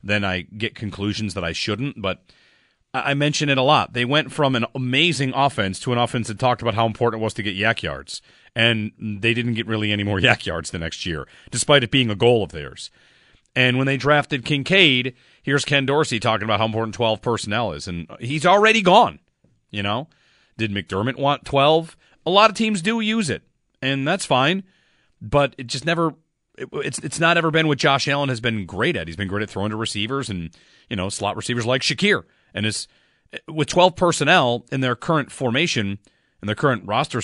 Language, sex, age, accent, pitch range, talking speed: English, male, 40-59, American, 105-150 Hz, 210 wpm